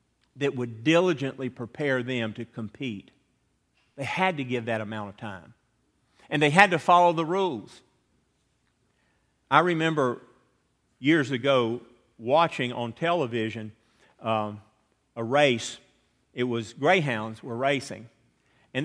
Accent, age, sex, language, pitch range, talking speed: American, 50-69, male, English, 115-145 Hz, 120 wpm